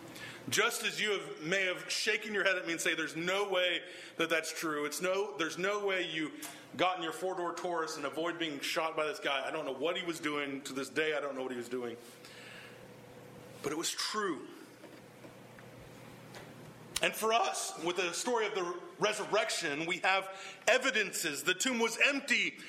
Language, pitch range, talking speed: English, 170-260 Hz, 190 wpm